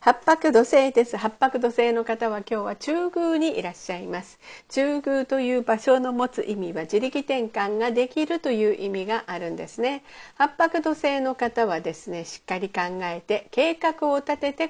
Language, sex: Japanese, female